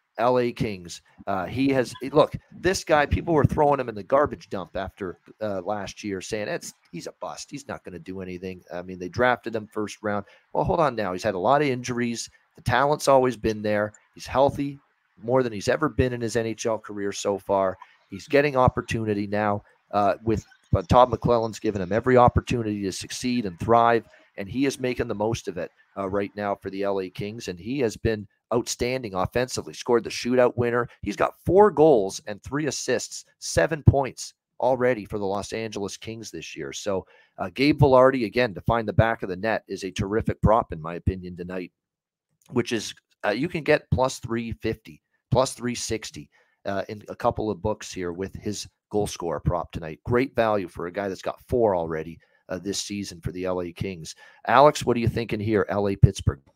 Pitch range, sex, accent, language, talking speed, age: 100-125 Hz, male, American, English, 205 wpm, 40-59